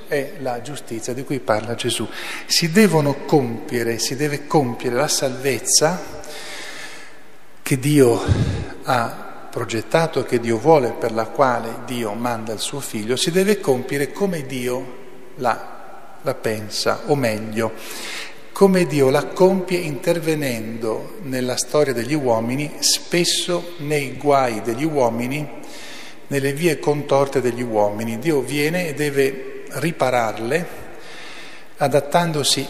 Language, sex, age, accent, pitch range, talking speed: Italian, male, 40-59, native, 120-155 Hz, 120 wpm